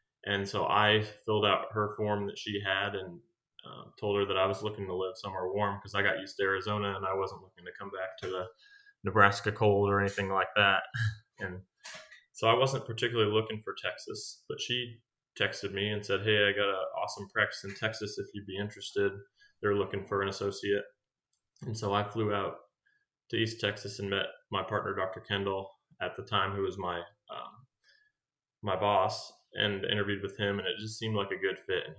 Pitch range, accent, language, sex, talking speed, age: 95-110 Hz, American, English, male, 205 wpm, 20-39